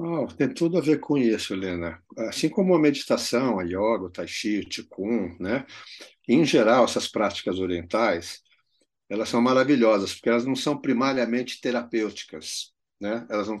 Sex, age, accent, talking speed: male, 60-79, Brazilian, 165 wpm